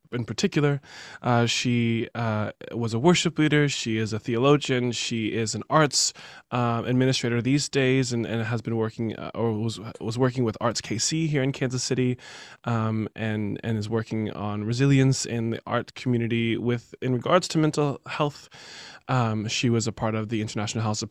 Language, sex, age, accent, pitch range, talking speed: English, male, 20-39, American, 110-130 Hz, 185 wpm